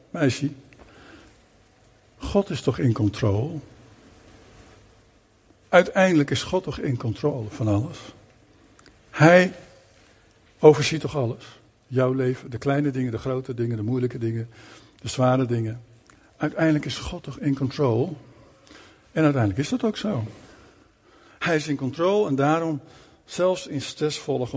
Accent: Dutch